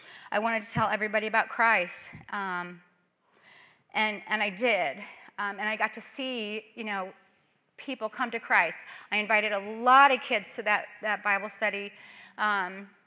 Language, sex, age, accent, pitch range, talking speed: English, female, 30-49, American, 195-240 Hz, 165 wpm